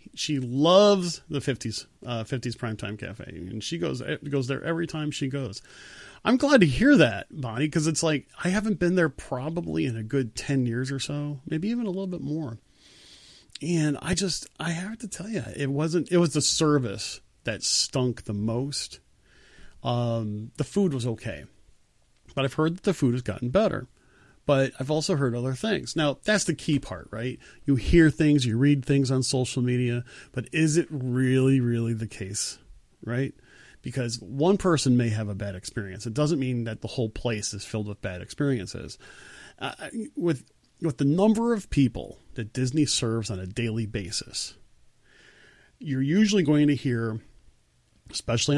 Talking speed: 180 wpm